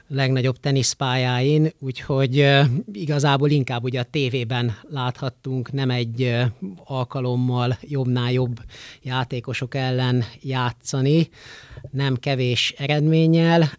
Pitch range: 120-140 Hz